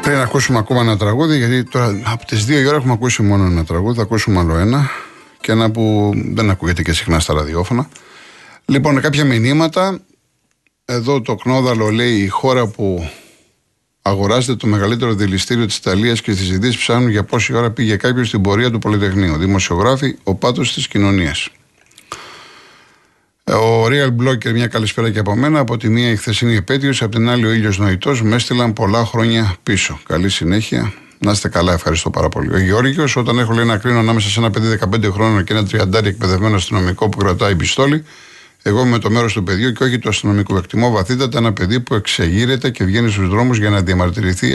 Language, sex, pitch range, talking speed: Greek, male, 100-125 Hz, 190 wpm